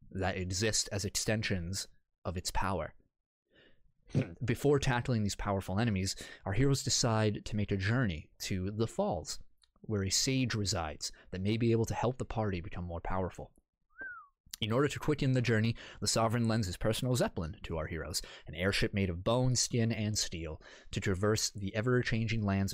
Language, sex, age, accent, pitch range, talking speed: English, male, 30-49, American, 95-120 Hz, 170 wpm